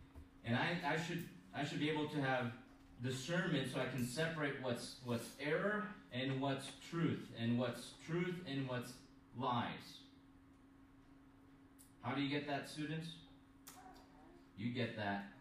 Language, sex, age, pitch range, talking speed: English, male, 30-49, 115-145 Hz, 140 wpm